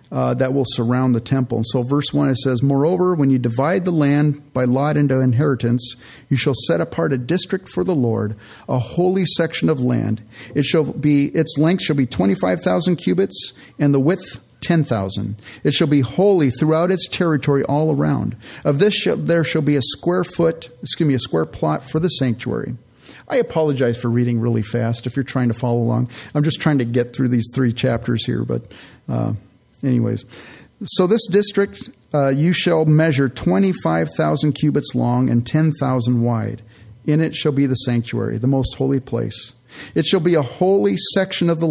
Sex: male